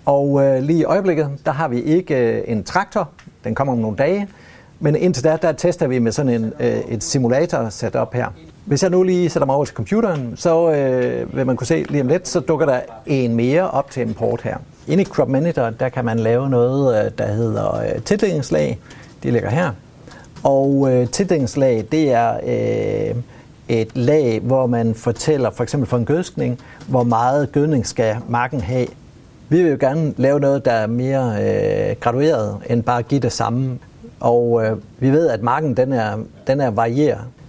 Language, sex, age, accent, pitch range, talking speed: Danish, male, 60-79, native, 120-155 Hz, 200 wpm